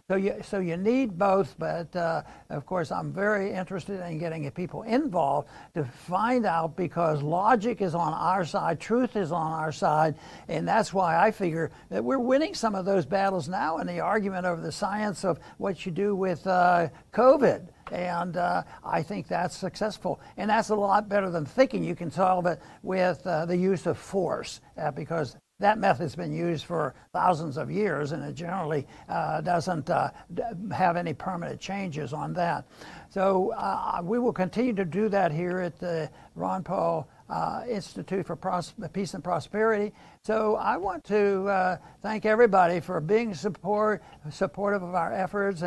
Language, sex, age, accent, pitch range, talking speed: English, male, 60-79, American, 170-205 Hz, 180 wpm